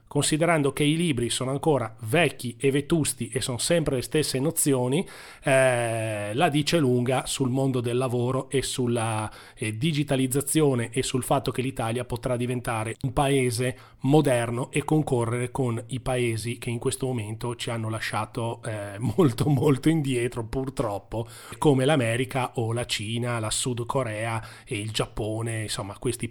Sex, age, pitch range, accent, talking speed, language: male, 30-49, 115-155 Hz, native, 155 wpm, Italian